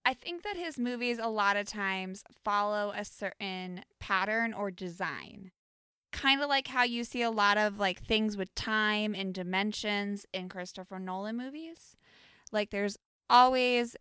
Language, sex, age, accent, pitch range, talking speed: English, female, 20-39, American, 190-230 Hz, 160 wpm